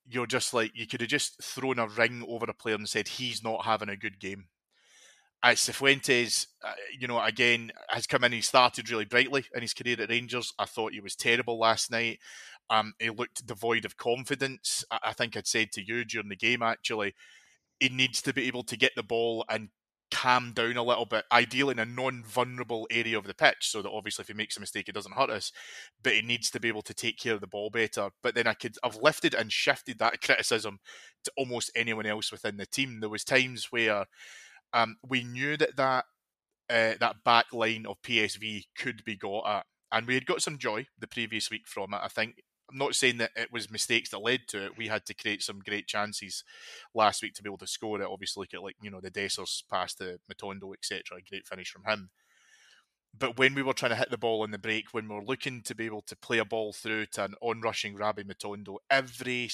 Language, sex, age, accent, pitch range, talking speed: English, male, 20-39, British, 105-125 Hz, 235 wpm